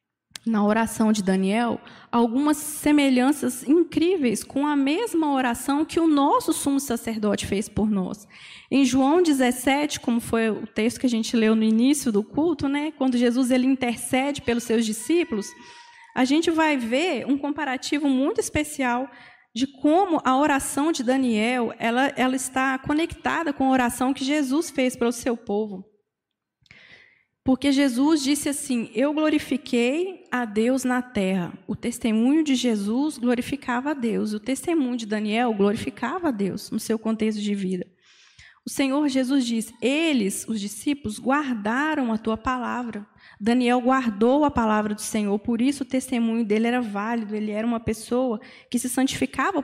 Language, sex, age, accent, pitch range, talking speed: Portuguese, female, 20-39, Brazilian, 225-285 Hz, 155 wpm